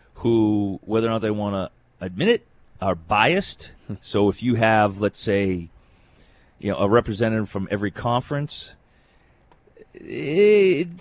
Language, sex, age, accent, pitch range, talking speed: English, male, 30-49, American, 100-125 Hz, 135 wpm